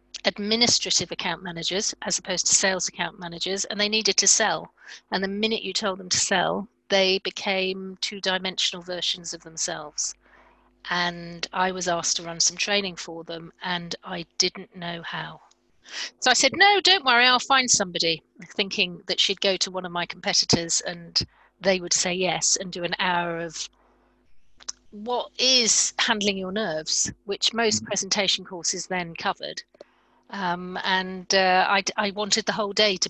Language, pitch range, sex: English, 180-210 Hz, female